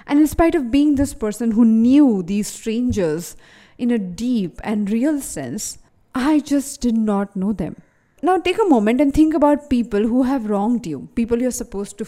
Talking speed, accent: 195 wpm, Indian